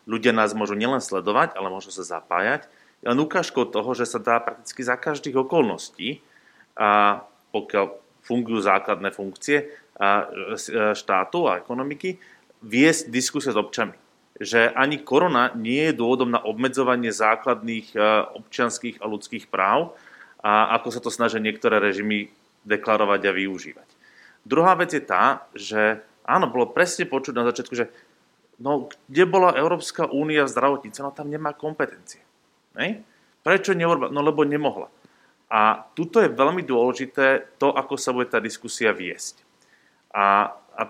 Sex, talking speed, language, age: male, 140 wpm, Slovak, 30-49